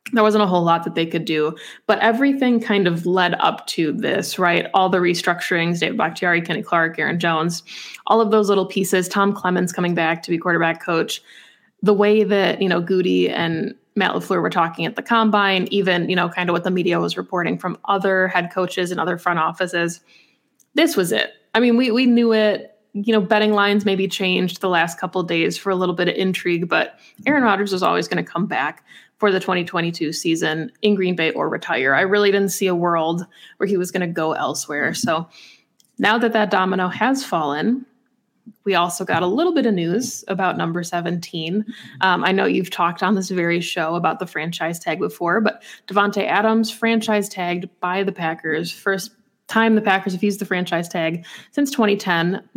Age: 20-39